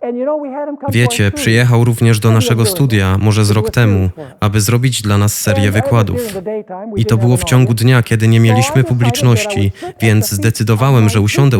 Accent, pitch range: native, 110-130 Hz